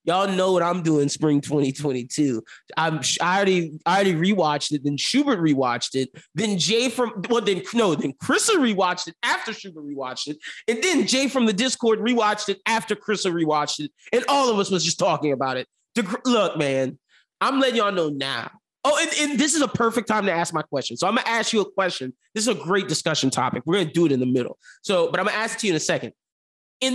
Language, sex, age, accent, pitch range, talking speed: English, male, 20-39, American, 160-240 Hz, 235 wpm